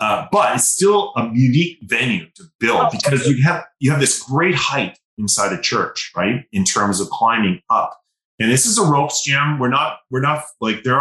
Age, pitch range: 30-49, 110-145 Hz